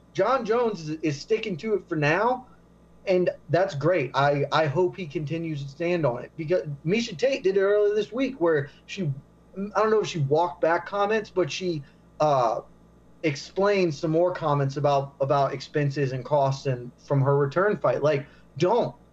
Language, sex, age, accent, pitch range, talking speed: English, male, 30-49, American, 160-210 Hz, 180 wpm